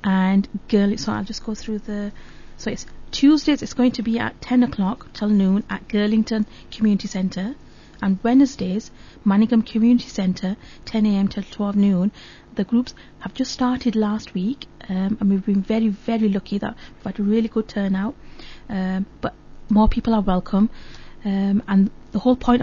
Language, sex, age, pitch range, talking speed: English, female, 30-49, 200-225 Hz, 170 wpm